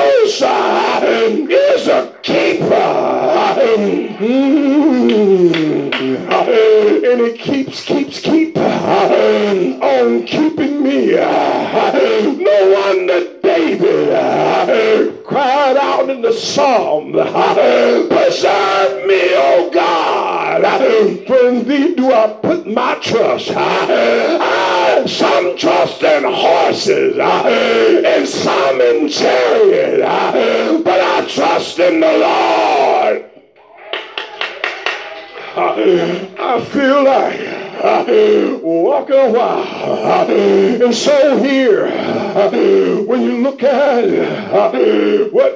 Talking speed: 75 wpm